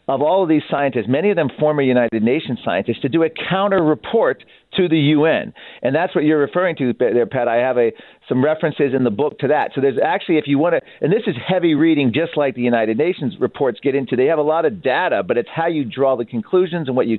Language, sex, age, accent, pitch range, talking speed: English, male, 40-59, American, 130-175 Hz, 250 wpm